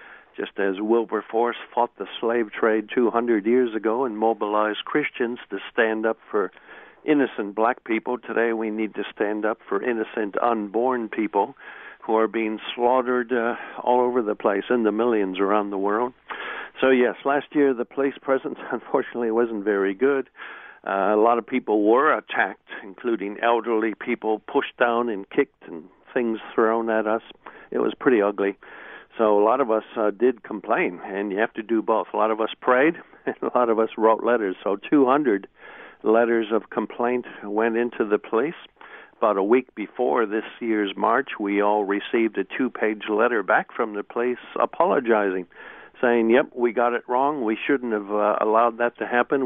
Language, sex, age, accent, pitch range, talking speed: English, male, 60-79, American, 105-120 Hz, 175 wpm